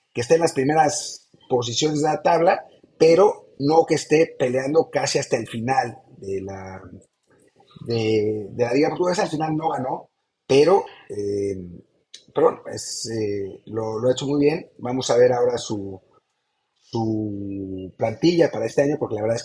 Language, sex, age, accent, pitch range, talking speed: English, male, 30-49, Mexican, 115-160 Hz, 165 wpm